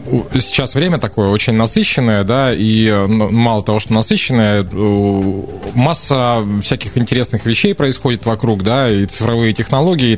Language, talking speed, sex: Russian, 130 wpm, male